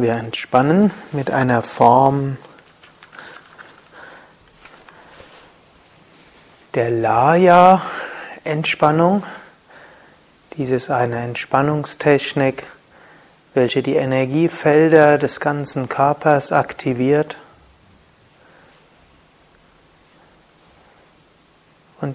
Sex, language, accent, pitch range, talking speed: male, German, German, 130-155 Hz, 50 wpm